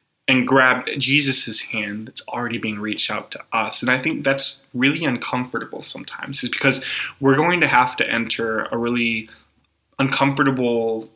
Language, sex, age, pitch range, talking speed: English, male, 10-29, 115-135 Hz, 155 wpm